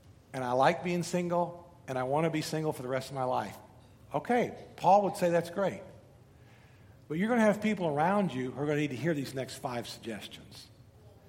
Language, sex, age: English, male, 50-69